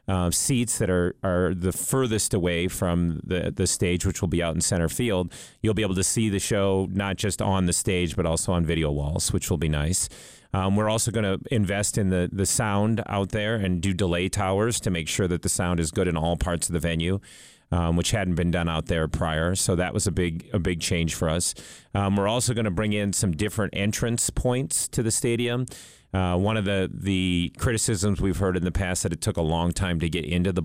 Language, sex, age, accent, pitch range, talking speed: English, male, 30-49, American, 85-105 Hz, 240 wpm